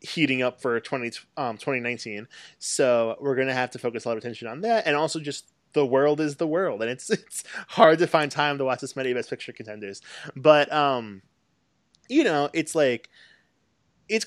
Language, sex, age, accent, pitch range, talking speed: English, male, 20-39, American, 120-160 Hz, 200 wpm